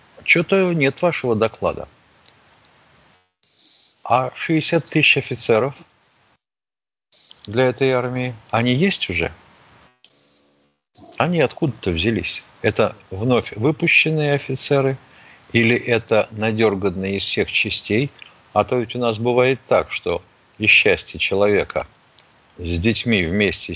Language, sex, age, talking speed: Russian, male, 50-69, 105 wpm